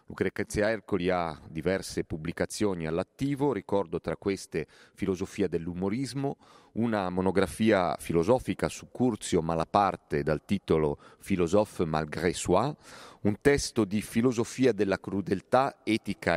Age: 40-59